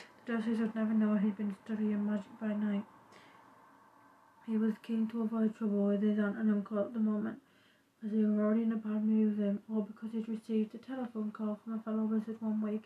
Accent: British